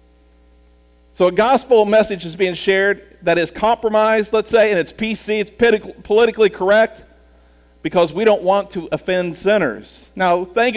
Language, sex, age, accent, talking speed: English, male, 50-69, American, 155 wpm